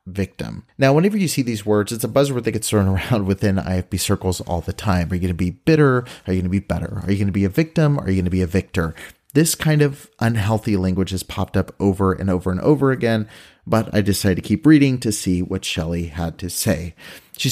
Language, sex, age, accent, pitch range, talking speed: English, male, 30-49, American, 95-140 Hz, 255 wpm